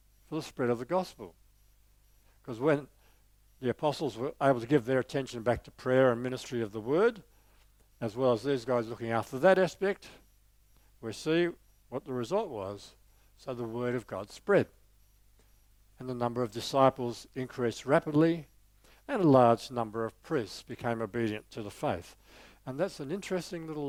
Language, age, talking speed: English, 60-79, 170 wpm